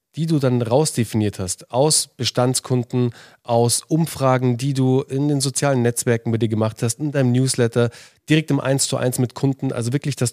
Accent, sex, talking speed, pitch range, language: German, male, 185 wpm, 120-150 Hz, German